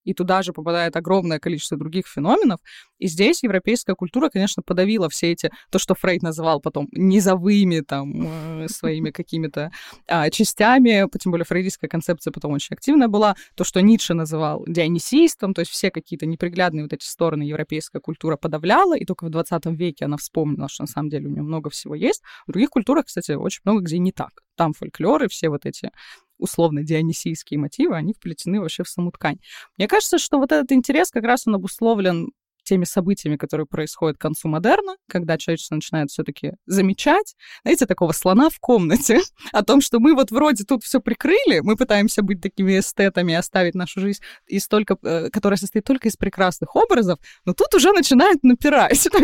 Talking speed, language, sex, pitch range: 180 wpm, Russian, female, 165-230 Hz